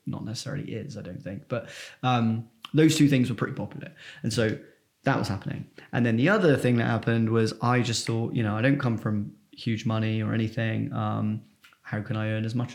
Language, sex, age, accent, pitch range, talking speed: English, male, 20-39, British, 115-145 Hz, 220 wpm